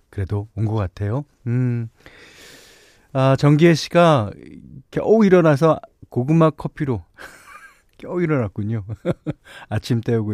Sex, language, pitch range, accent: male, Korean, 100-145 Hz, native